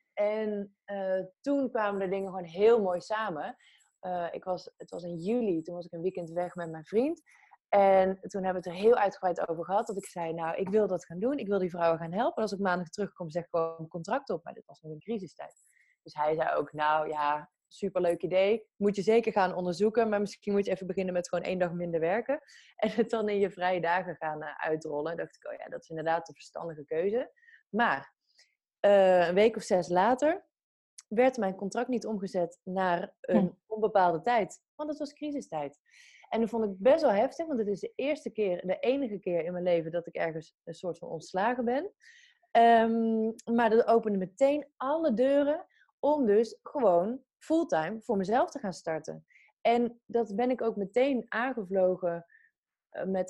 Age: 20-39